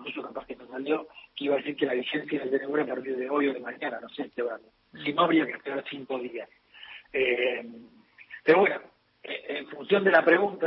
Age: 40-59